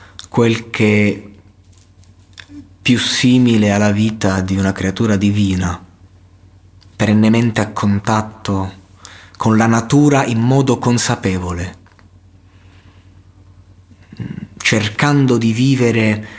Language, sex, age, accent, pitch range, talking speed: Italian, male, 30-49, native, 95-110 Hz, 85 wpm